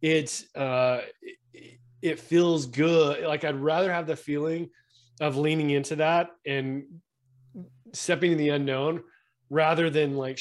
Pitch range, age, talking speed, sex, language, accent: 125-155 Hz, 30-49, 135 wpm, male, English, American